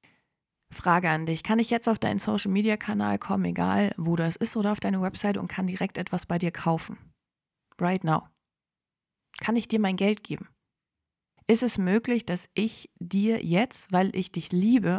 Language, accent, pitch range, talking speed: German, German, 175-215 Hz, 185 wpm